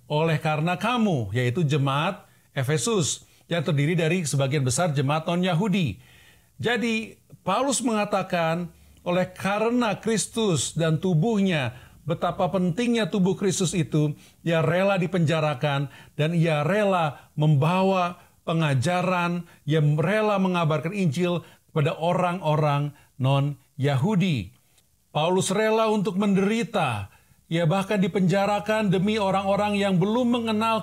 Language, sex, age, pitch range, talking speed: Indonesian, male, 50-69, 145-195 Hz, 105 wpm